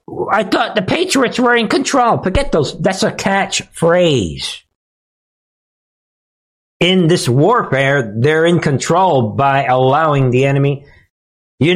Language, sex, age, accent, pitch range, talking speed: English, male, 50-69, American, 115-175 Hz, 120 wpm